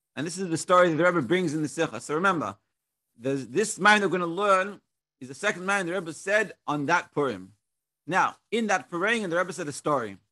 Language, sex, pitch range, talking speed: English, male, 140-190 Hz, 225 wpm